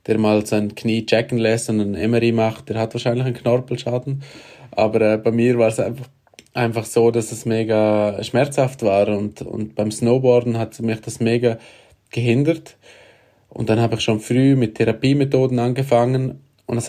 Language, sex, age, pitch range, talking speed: German, male, 20-39, 115-125 Hz, 175 wpm